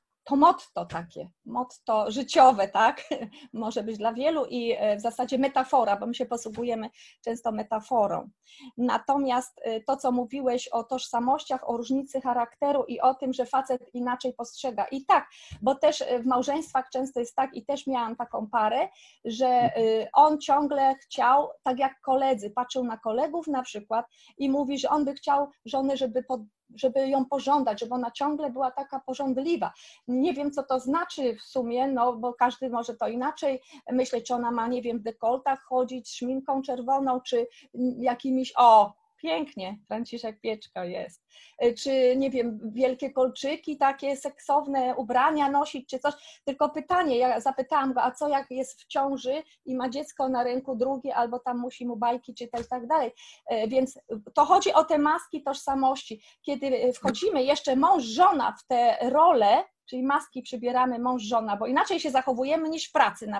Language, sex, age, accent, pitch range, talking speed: Polish, female, 30-49, native, 240-280 Hz, 165 wpm